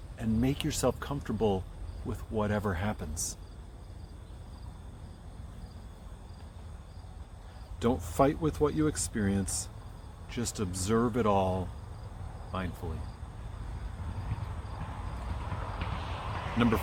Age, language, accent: 40-59, English, American